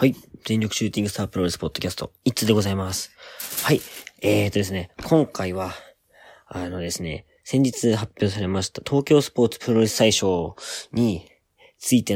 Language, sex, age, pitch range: Japanese, male, 20-39, 95-120 Hz